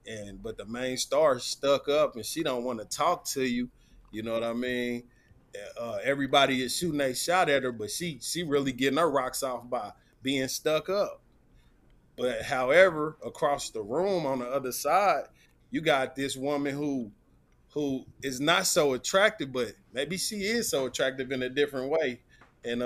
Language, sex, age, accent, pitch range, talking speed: English, male, 20-39, American, 120-155 Hz, 185 wpm